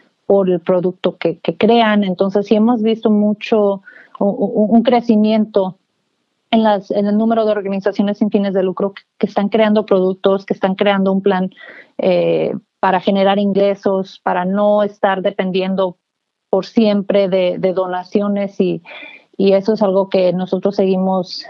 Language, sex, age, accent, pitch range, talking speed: English, female, 40-59, Mexican, 185-215 Hz, 155 wpm